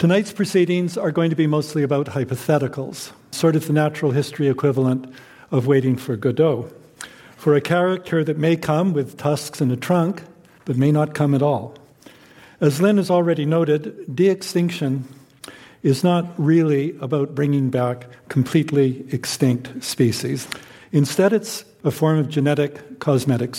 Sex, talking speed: male, 150 wpm